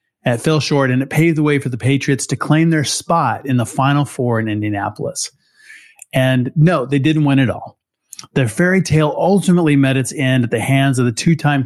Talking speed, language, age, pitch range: 210 wpm, English, 30-49, 130-160 Hz